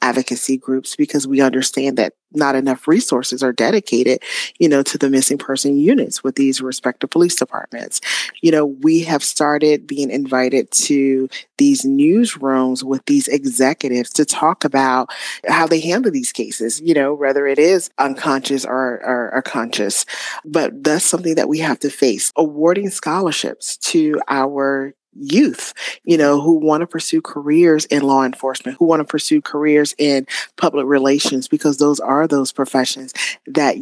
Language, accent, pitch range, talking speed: English, American, 135-165 Hz, 160 wpm